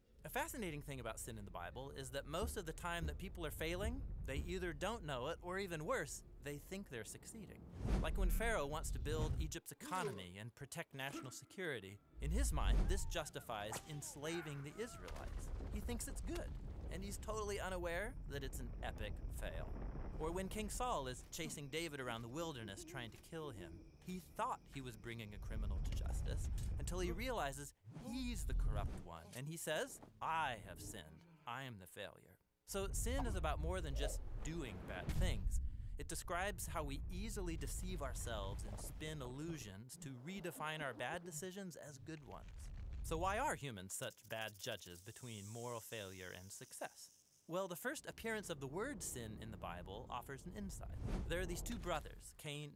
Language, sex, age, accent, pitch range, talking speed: English, male, 30-49, American, 95-160 Hz, 185 wpm